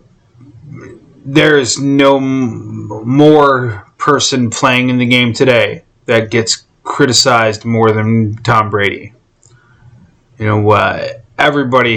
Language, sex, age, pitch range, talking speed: English, male, 30-49, 115-130 Hz, 105 wpm